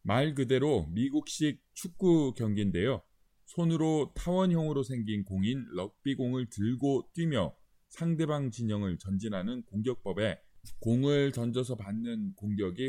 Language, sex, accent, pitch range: Korean, male, native, 115-150 Hz